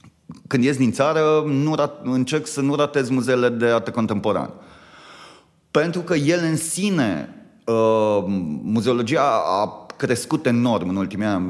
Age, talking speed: 30-49, 140 wpm